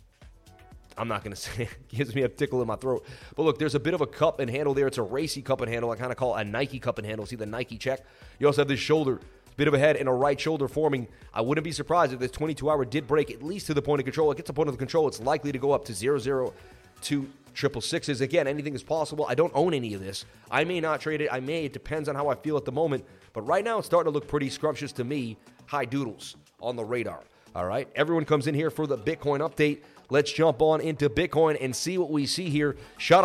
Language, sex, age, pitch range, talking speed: English, male, 30-49, 120-150 Hz, 280 wpm